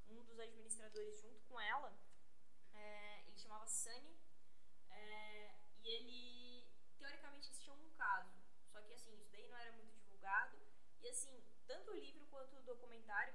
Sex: female